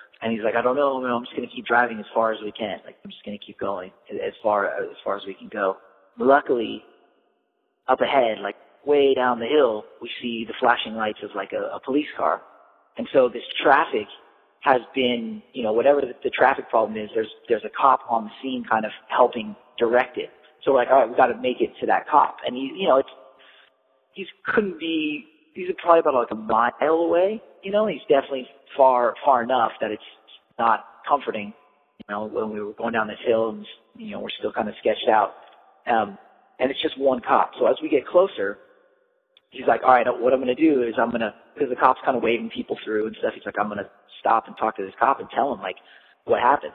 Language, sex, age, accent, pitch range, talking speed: English, male, 30-49, American, 115-170 Hz, 235 wpm